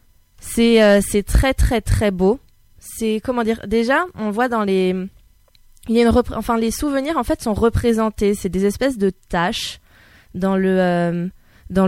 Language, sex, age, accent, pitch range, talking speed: French, female, 20-39, French, 195-245 Hz, 175 wpm